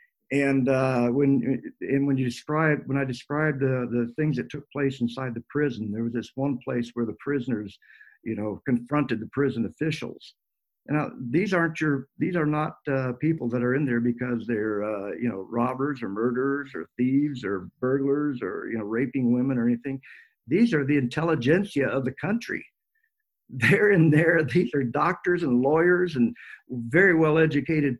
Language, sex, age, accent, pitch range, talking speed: English, male, 50-69, American, 125-155 Hz, 180 wpm